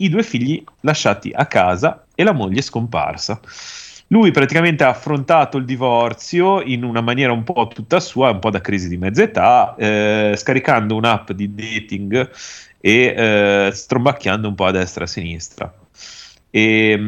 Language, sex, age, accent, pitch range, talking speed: Italian, male, 30-49, native, 100-130 Hz, 160 wpm